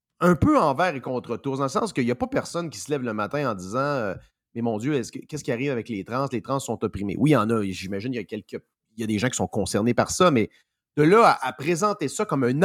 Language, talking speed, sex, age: French, 305 wpm, male, 30-49